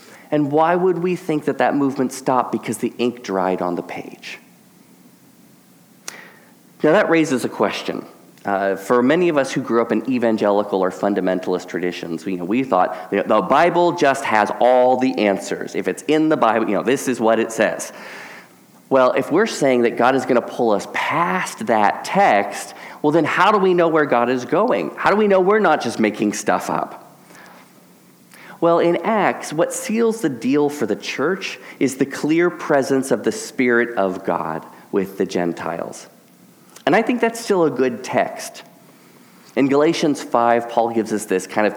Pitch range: 105-155 Hz